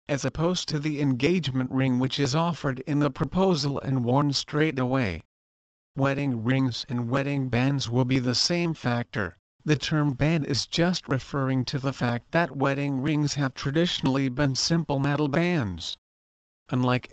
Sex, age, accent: male, 50-69, American